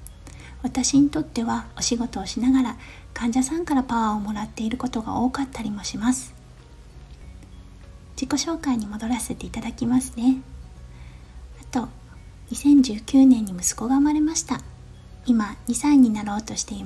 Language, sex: Japanese, female